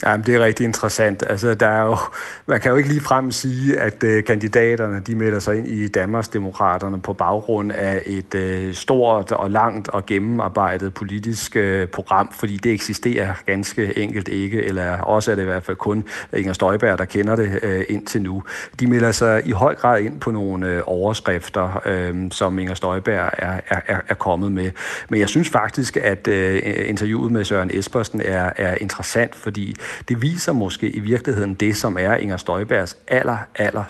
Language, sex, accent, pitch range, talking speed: Danish, male, native, 100-120 Hz, 185 wpm